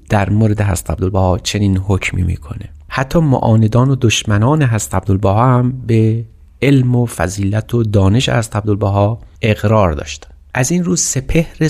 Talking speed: 145 wpm